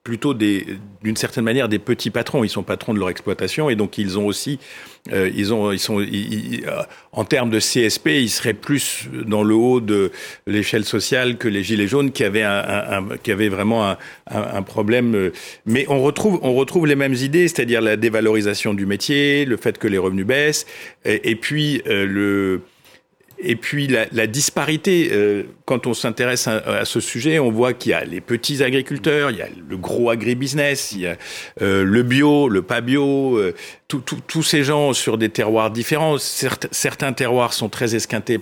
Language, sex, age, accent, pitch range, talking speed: French, male, 50-69, French, 105-135 Hz, 195 wpm